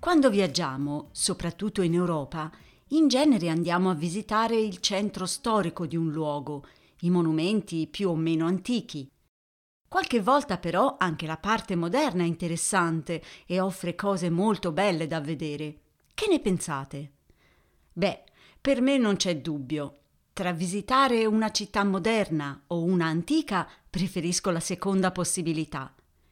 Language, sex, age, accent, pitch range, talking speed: Italian, female, 40-59, native, 160-215 Hz, 135 wpm